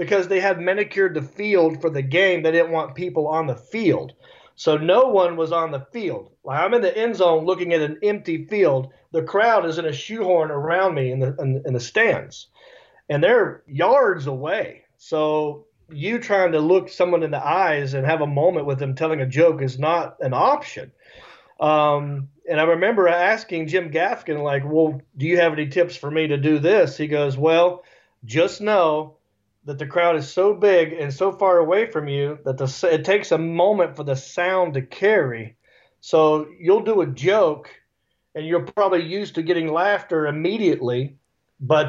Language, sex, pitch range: English, male, 145-185 Hz